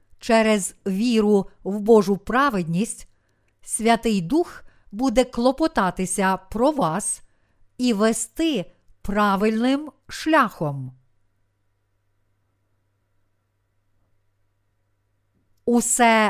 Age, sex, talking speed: 50-69, female, 60 wpm